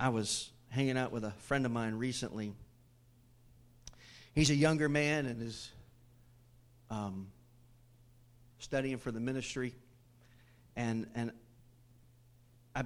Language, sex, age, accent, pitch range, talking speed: English, male, 40-59, American, 120-130 Hz, 110 wpm